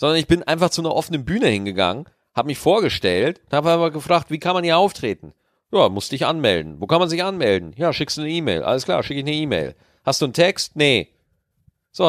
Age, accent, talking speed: 40-59, German, 235 wpm